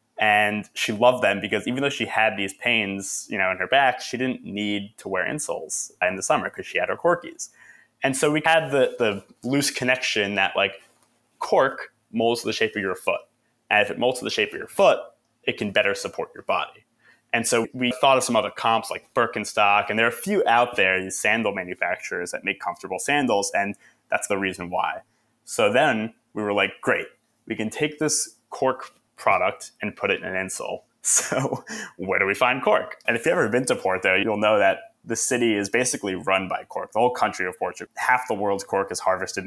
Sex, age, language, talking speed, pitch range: male, 20-39, English, 215 wpm, 95-120 Hz